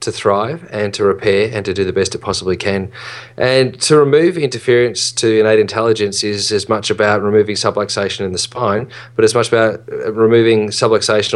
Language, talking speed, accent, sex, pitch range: English, 185 wpm, Australian, male, 105-130 Hz